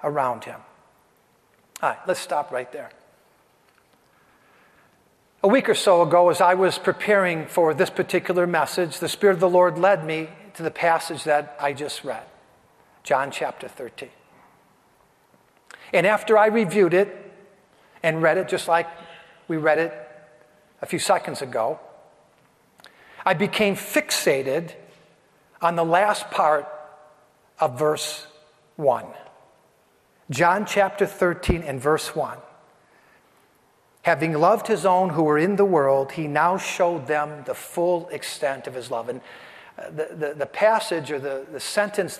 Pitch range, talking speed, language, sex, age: 150-190 Hz, 140 wpm, English, male, 50-69